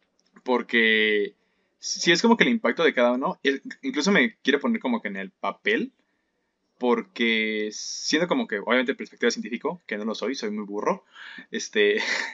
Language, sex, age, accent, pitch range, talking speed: Spanish, male, 20-39, Mexican, 110-140 Hz, 175 wpm